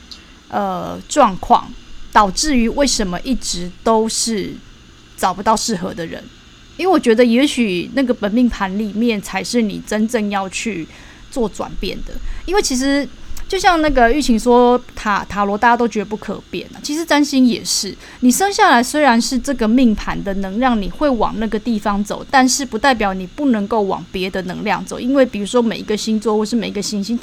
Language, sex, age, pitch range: Chinese, female, 20-39, 205-255 Hz